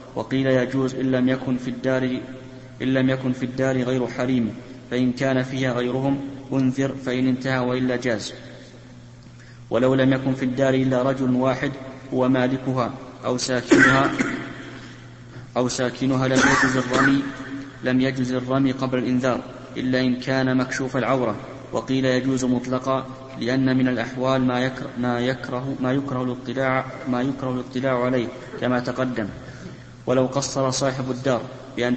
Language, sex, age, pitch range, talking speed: Arabic, male, 20-39, 125-130 Hz, 135 wpm